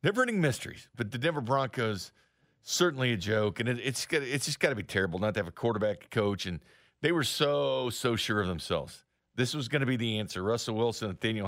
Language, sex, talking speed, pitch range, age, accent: English, male, 215 wpm, 90-140 Hz, 40-59, American